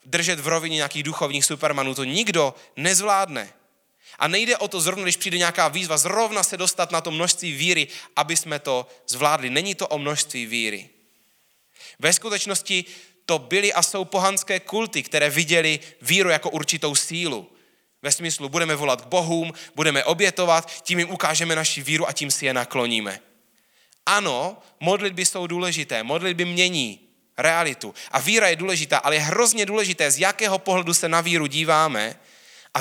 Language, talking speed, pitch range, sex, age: Czech, 165 wpm, 150-185 Hz, male, 20-39